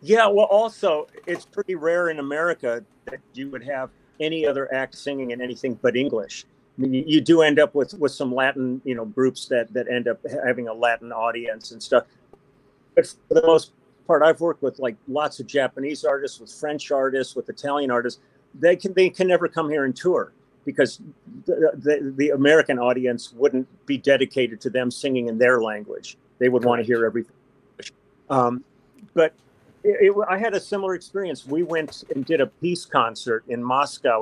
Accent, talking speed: American, 195 wpm